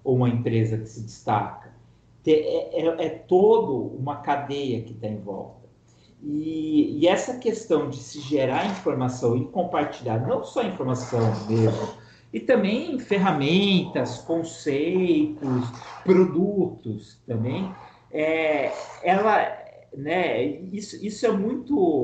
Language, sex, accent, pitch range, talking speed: Portuguese, male, Brazilian, 120-195 Hz, 120 wpm